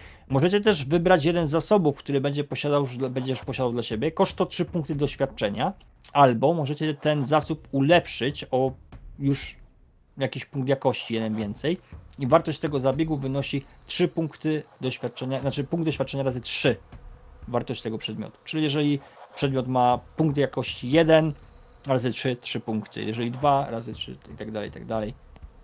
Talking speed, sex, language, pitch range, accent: 155 wpm, male, Polish, 115-145 Hz, native